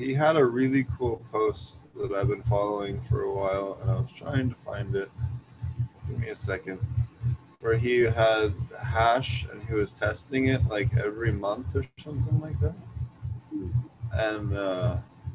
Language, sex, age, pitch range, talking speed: English, male, 20-39, 105-125 Hz, 160 wpm